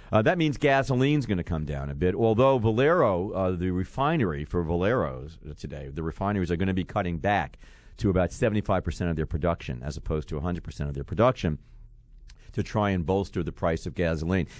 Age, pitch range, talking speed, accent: 50-69, 85-115 Hz, 200 wpm, American